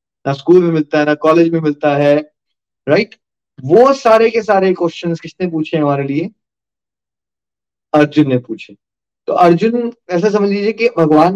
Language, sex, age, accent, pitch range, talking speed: Hindi, male, 30-49, native, 150-200 Hz, 155 wpm